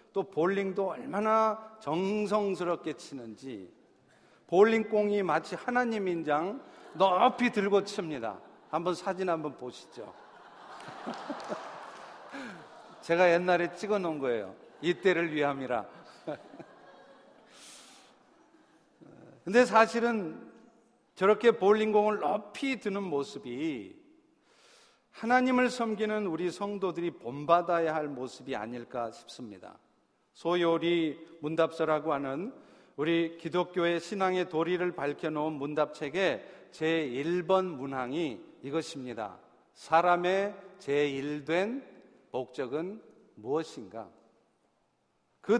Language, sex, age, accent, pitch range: Korean, male, 50-69, native, 155-210 Hz